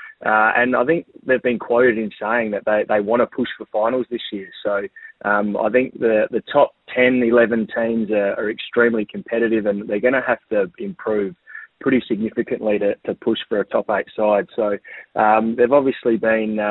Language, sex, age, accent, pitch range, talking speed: English, male, 20-39, Australian, 105-120 Hz, 200 wpm